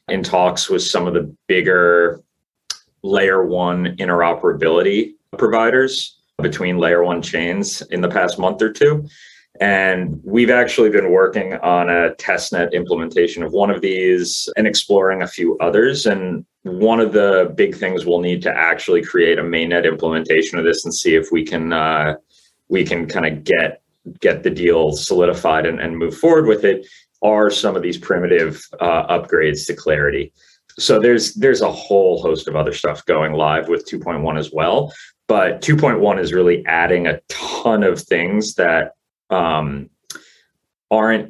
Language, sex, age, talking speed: English, male, 30-49, 165 wpm